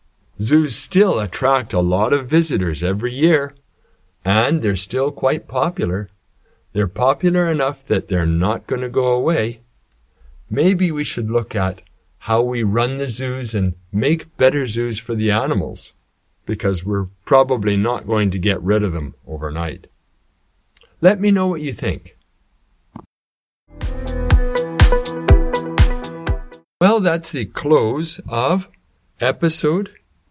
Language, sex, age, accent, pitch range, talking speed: English, male, 50-69, American, 90-145 Hz, 125 wpm